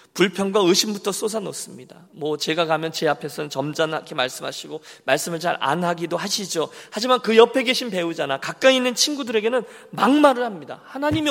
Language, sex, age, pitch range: Korean, male, 40-59, 150-235 Hz